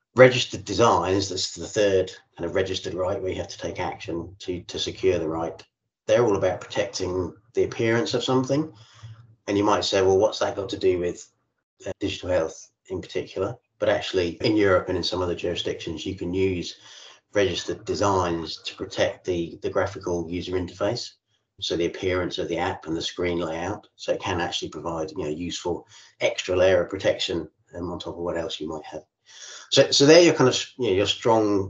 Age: 30-49